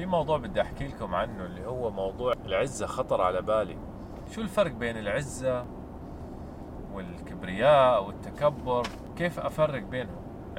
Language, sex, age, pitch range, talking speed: Arabic, male, 30-49, 95-135 Hz, 125 wpm